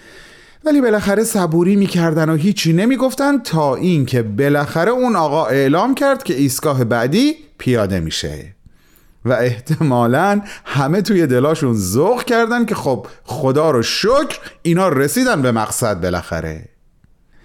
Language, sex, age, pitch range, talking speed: Persian, male, 40-59, 125-185 Hz, 125 wpm